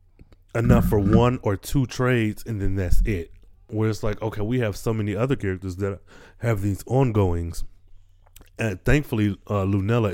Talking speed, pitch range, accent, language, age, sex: 165 wpm, 90-110 Hz, American, English, 20-39, male